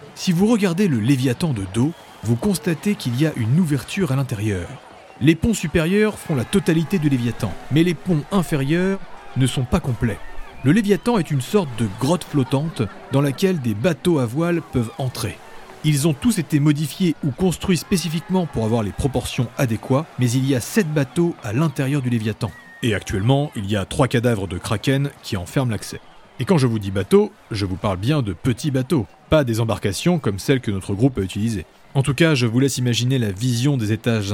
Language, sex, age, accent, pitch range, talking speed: French, male, 40-59, French, 115-155 Hz, 205 wpm